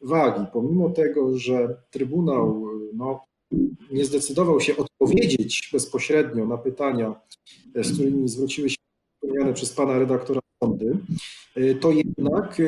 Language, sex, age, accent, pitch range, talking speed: Polish, male, 40-59, native, 130-175 Hz, 115 wpm